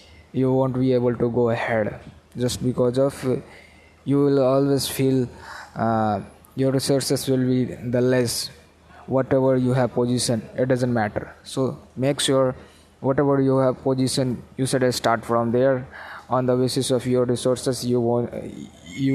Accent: Indian